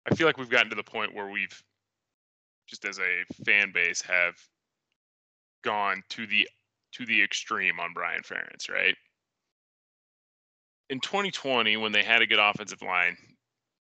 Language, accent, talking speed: English, American, 150 wpm